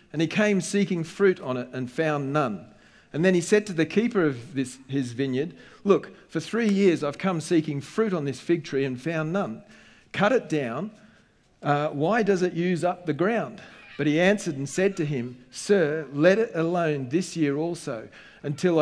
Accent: Australian